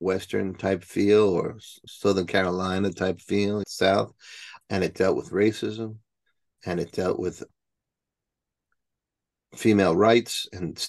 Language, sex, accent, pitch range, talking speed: English, male, American, 90-110 Hz, 105 wpm